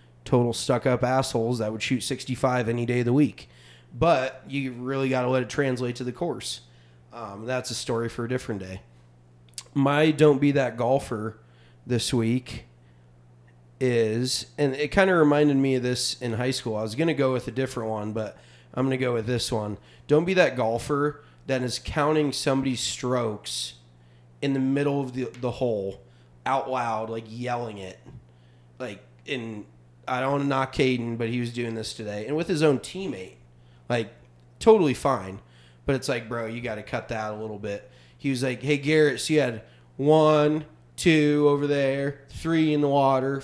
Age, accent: 30-49, American